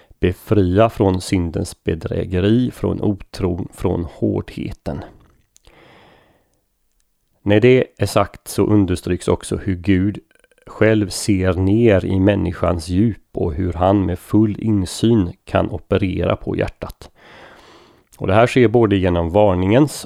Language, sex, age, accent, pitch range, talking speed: Swedish, male, 30-49, native, 90-110 Hz, 120 wpm